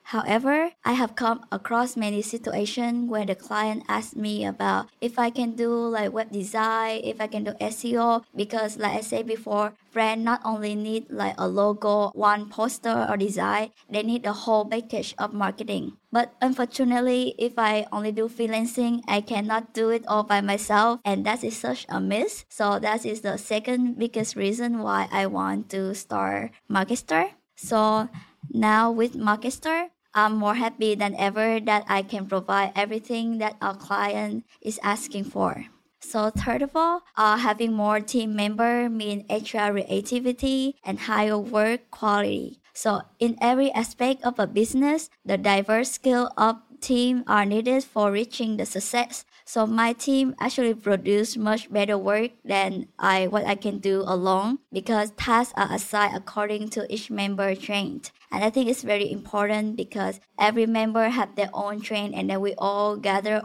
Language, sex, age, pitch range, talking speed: English, male, 20-39, 205-235 Hz, 165 wpm